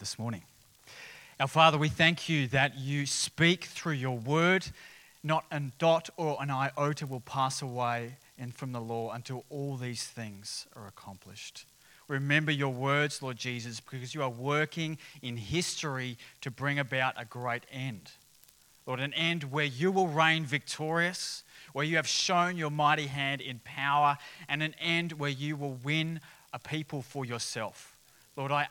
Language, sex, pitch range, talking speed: English, male, 130-155 Hz, 165 wpm